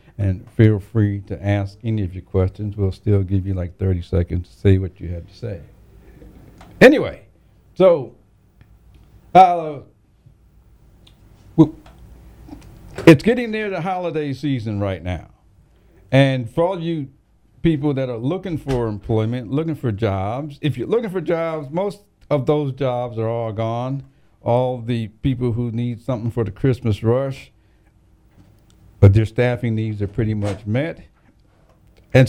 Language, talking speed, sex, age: English, 145 wpm, male, 60-79